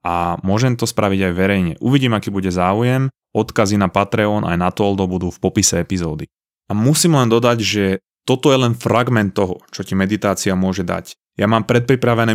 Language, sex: Slovak, male